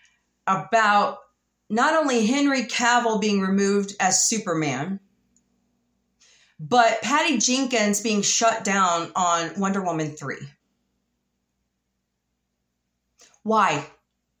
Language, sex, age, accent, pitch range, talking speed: English, female, 30-49, American, 170-250 Hz, 85 wpm